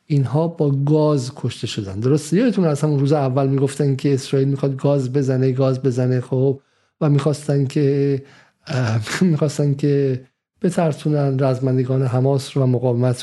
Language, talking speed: Persian, 135 wpm